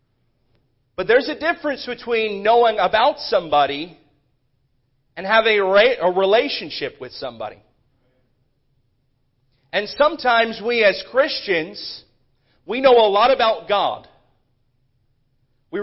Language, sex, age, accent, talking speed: English, male, 40-59, American, 100 wpm